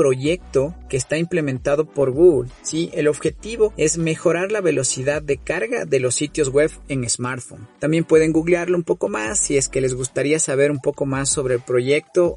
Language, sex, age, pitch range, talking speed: Spanish, male, 40-59, 125-155 Hz, 190 wpm